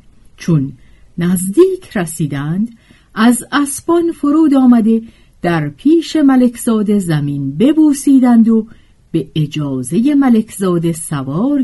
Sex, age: female, 50-69